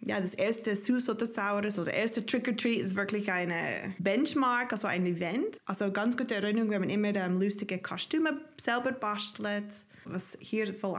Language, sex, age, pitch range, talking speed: German, female, 20-39, 190-225 Hz, 180 wpm